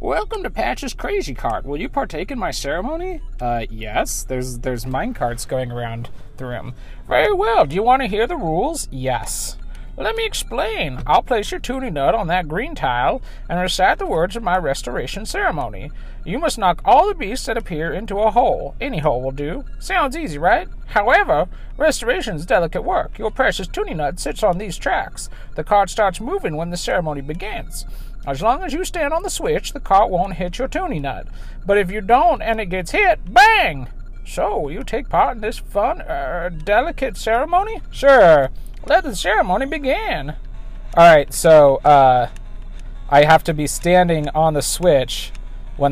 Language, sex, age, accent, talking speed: English, male, 40-59, American, 185 wpm